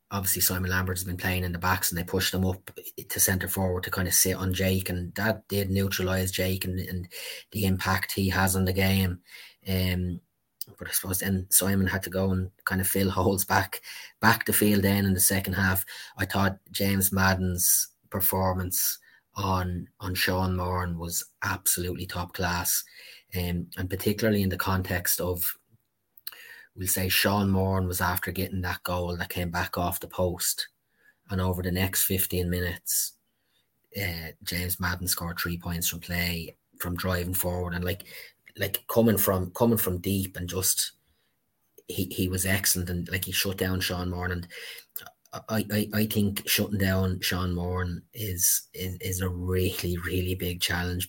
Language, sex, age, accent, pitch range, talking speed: English, male, 20-39, Irish, 90-95 Hz, 175 wpm